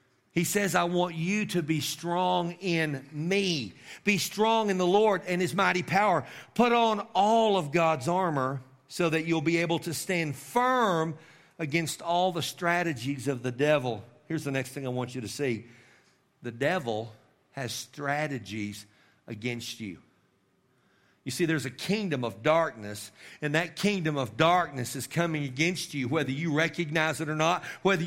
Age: 50-69